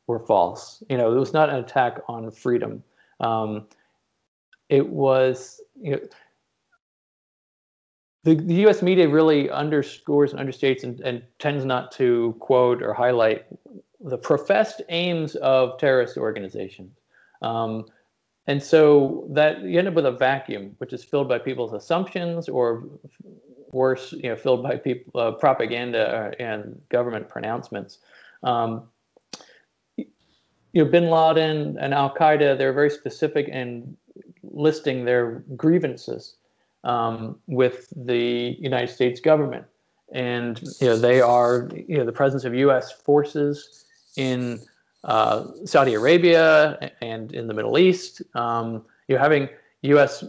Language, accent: English, American